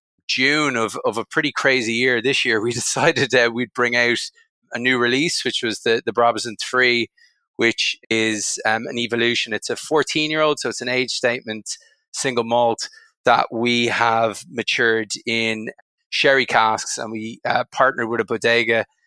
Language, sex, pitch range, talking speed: English, male, 115-140 Hz, 175 wpm